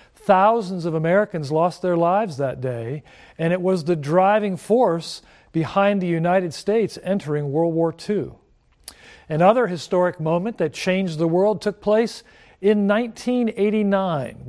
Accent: American